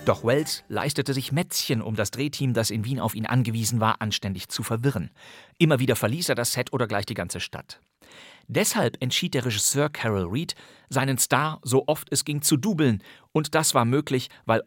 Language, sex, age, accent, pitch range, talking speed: German, male, 40-59, German, 110-135 Hz, 195 wpm